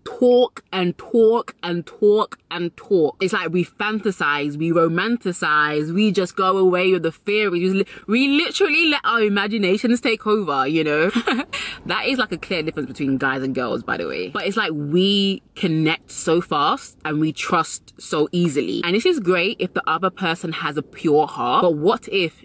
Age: 20-39